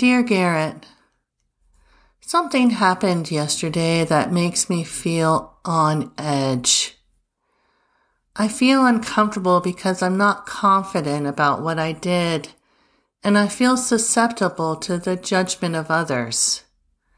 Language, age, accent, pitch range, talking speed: English, 40-59, American, 160-215 Hz, 110 wpm